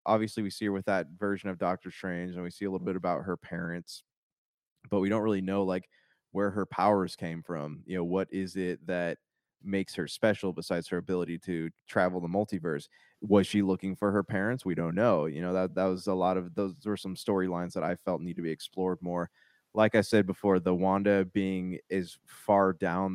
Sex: male